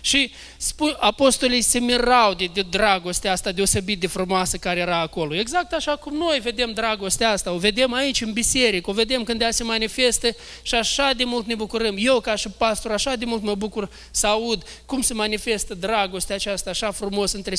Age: 20-39